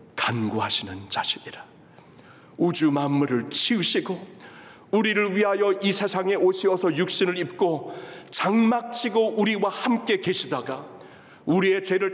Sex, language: male, Korean